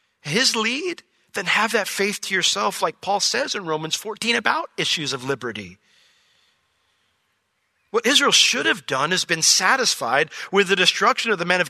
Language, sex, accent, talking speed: English, male, American, 170 wpm